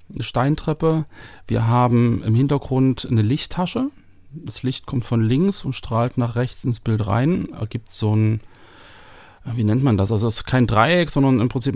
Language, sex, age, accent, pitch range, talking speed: German, male, 40-59, German, 110-135 Hz, 180 wpm